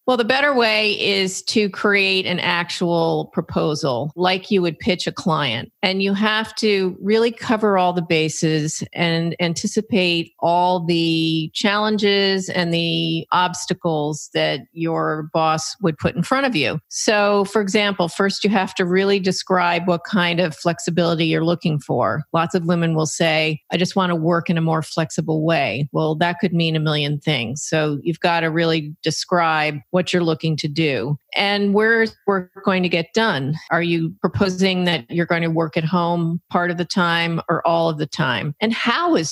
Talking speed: 185 wpm